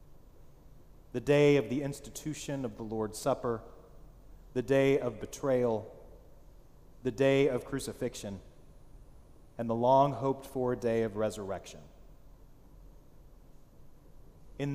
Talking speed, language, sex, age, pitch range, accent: 100 wpm, English, male, 40-59, 115-145 Hz, American